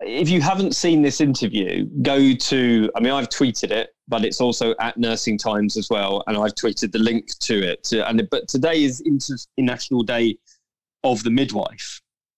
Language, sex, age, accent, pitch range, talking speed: English, male, 20-39, British, 110-135 Hz, 180 wpm